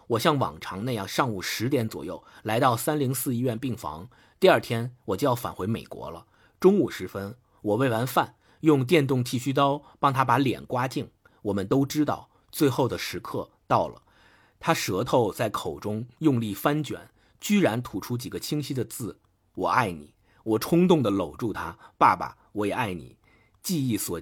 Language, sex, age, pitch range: Chinese, male, 50-69, 110-150 Hz